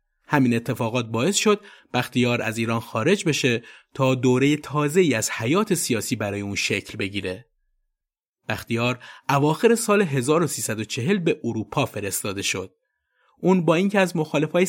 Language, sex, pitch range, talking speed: Persian, male, 115-165 Hz, 135 wpm